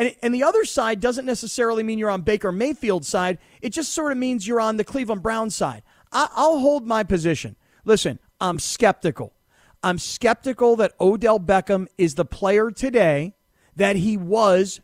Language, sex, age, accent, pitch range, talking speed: English, male, 40-59, American, 190-250 Hz, 170 wpm